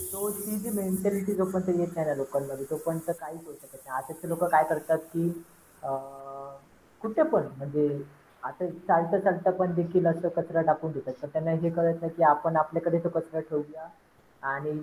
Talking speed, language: 155 wpm, English